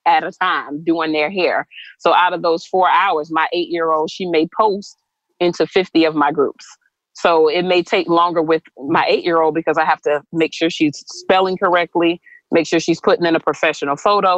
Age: 30-49